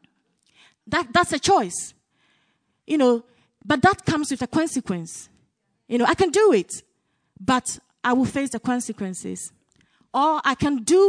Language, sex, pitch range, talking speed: English, female, 235-305 Hz, 150 wpm